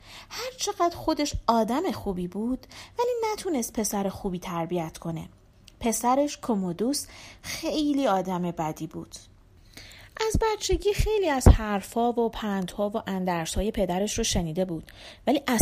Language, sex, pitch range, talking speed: Persian, female, 185-290 Hz, 120 wpm